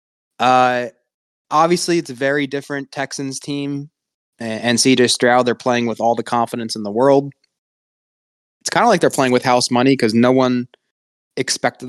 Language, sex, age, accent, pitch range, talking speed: English, male, 20-39, American, 115-135 Hz, 165 wpm